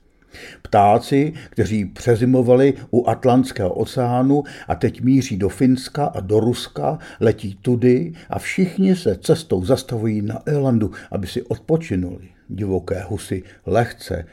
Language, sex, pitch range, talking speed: Czech, male, 95-135 Hz, 120 wpm